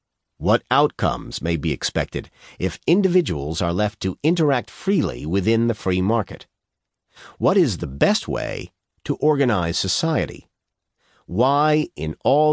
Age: 50-69